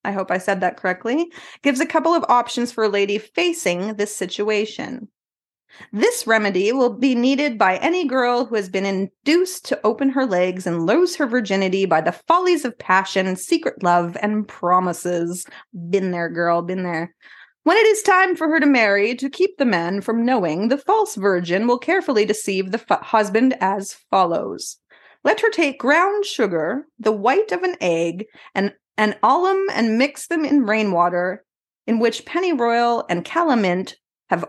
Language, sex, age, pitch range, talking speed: English, female, 30-49, 195-305 Hz, 170 wpm